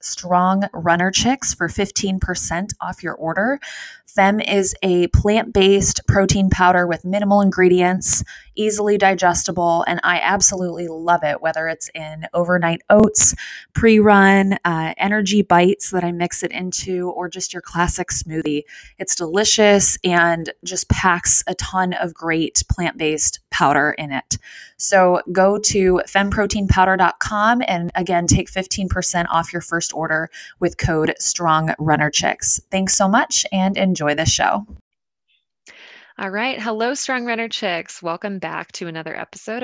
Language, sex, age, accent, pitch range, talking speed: English, female, 20-39, American, 160-195 Hz, 135 wpm